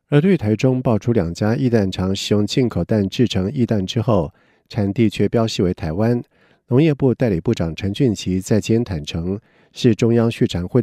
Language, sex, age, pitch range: Chinese, male, 50-69, 95-125 Hz